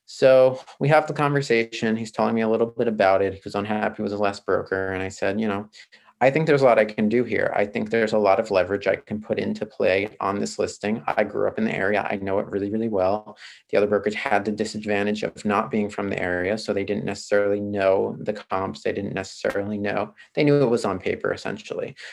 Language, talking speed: English, 245 wpm